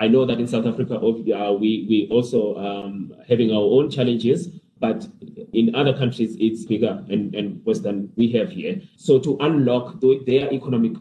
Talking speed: 175 wpm